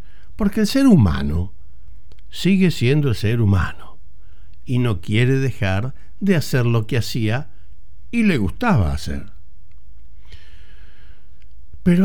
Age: 60-79